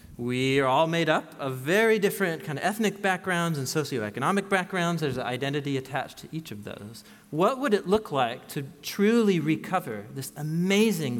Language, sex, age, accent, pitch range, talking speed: English, male, 40-59, American, 130-170 Hz, 175 wpm